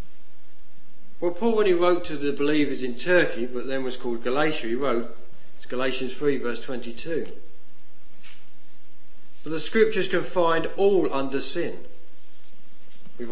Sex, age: male, 40-59